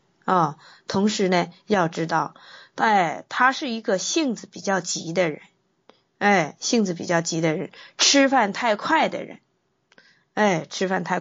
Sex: female